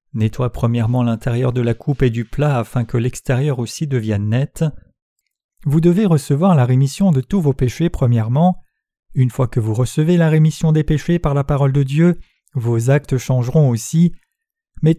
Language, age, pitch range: French, 40-59, 120-155 Hz